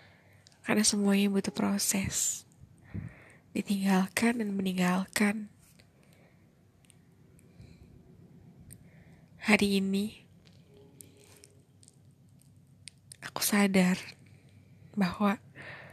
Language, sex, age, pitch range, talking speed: Indonesian, female, 20-39, 140-200 Hz, 45 wpm